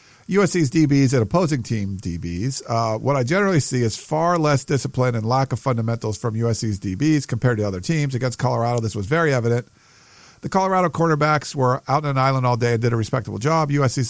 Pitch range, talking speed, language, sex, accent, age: 115-145 Hz, 205 wpm, English, male, American, 50-69